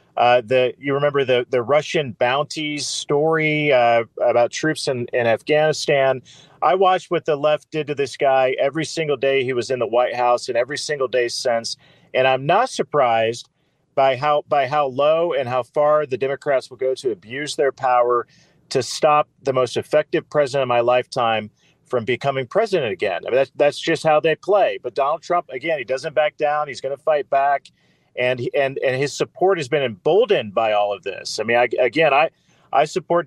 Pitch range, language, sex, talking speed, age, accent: 125-150 Hz, English, male, 200 wpm, 40-59, American